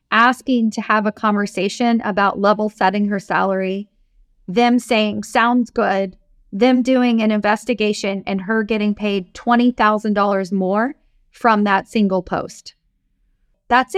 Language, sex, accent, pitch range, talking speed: English, female, American, 205-245 Hz, 125 wpm